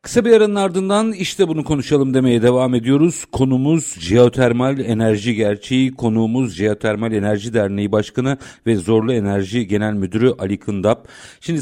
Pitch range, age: 115-145 Hz, 50-69